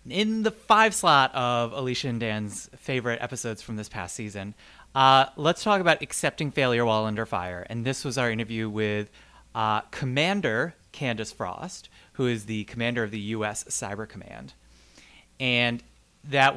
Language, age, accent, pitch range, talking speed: English, 30-49, American, 110-140 Hz, 160 wpm